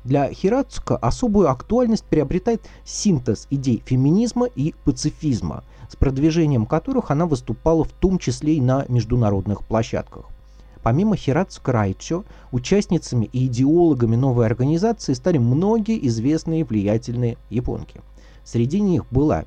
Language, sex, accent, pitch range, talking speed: Russian, male, native, 120-165 Hz, 115 wpm